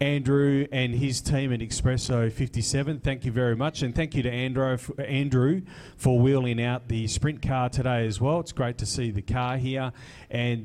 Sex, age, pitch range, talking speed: male, 30-49, 110-135 Hz, 195 wpm